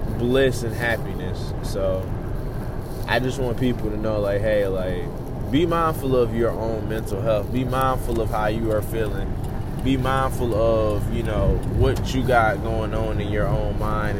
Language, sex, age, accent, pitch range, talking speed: English, male, 20-39, American, 105-125 Hz, 175 wpm